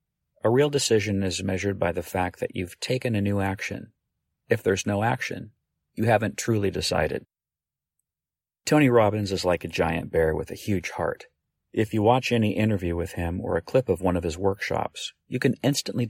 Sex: male